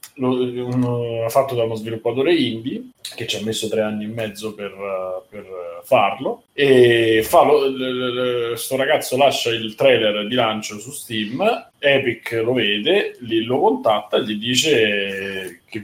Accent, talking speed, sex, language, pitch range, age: native, 160 wpm, male, Italian, 105-130 Hz, 30-49